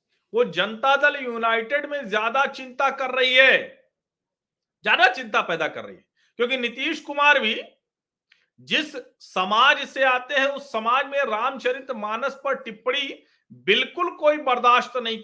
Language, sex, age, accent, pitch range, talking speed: Hindi, male, 40-59, native, 205-265 Hz, 140 wpm